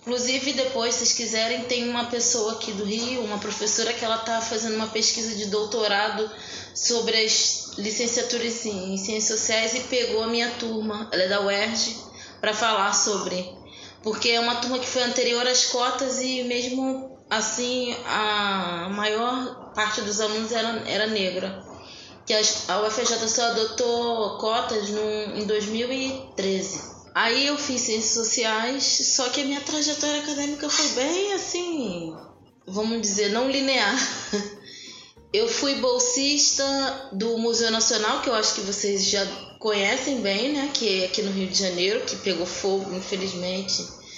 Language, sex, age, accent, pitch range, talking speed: Portuguese, female, 20-39, Brazilian, 210-250 Hz, 150 wpm